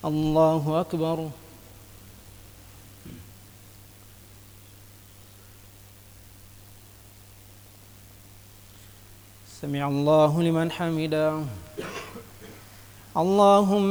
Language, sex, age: English, male, 40-59